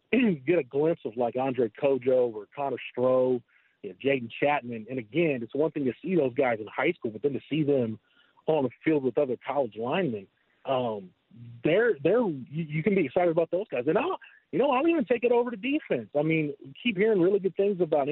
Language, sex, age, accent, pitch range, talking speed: English, male, 40-59, American, 125-165 Hz, 230 wpm